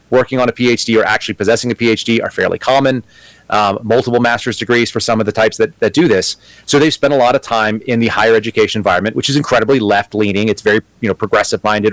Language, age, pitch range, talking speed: English, 30-49, 105-125 Hz, 230 wpm